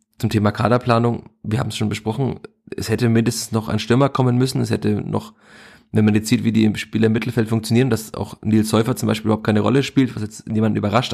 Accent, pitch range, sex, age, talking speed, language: German, 110-120 Hz, male, 30-49, 230 wpm, German